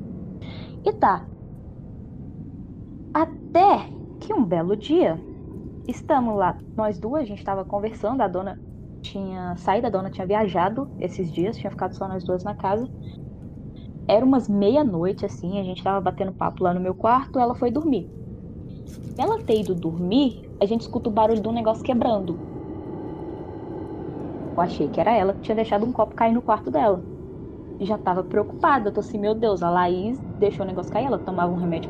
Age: 10-29